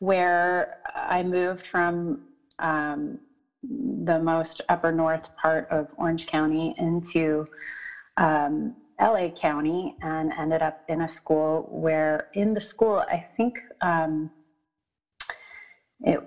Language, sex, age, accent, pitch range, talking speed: English, female, 30-49, American, 160-210 Hz, 115 wpm